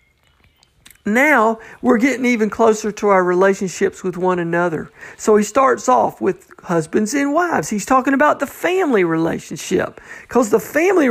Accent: American